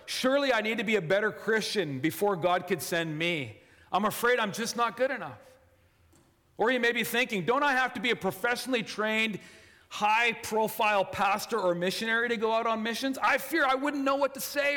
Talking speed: 205 wpm